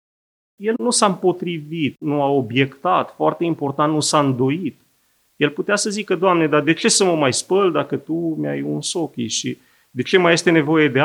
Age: 30-49